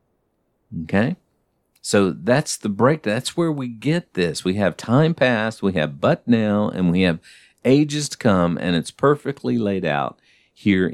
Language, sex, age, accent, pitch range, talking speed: English, male, 50-69, American, 80-120 Hz, 165 wpm